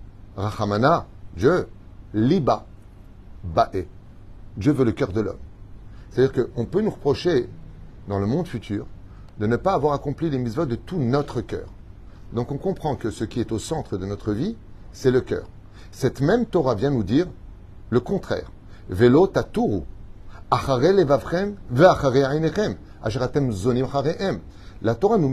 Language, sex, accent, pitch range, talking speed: French, male, French, 100-140 Hz, 135 wpm